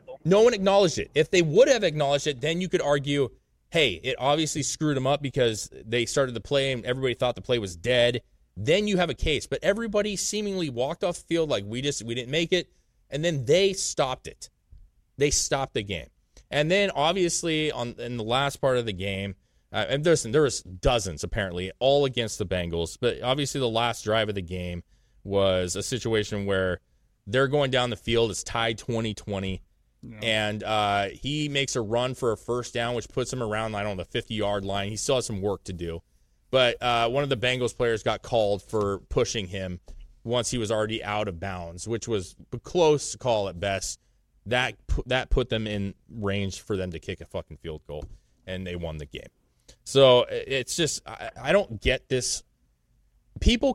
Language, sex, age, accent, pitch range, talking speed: English, male, 20-39, American, 100-140 Hz, 205 wpm